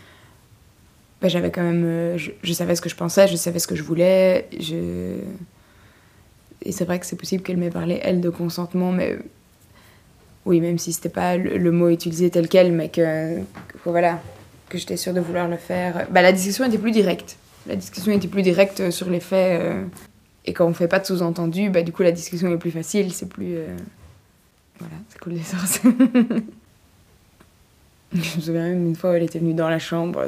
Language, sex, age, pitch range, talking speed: French, female, 20-39, 170-185 Hz, 205 wpm